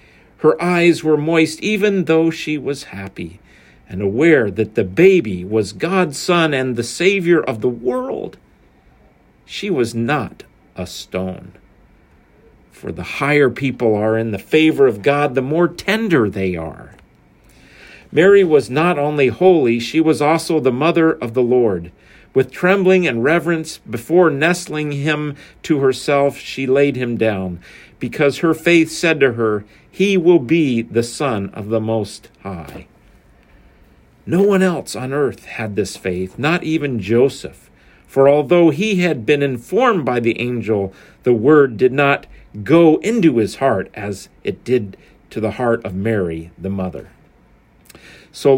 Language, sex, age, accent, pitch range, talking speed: English, male, 50-69, American, 110-160 Hz, 150 wpm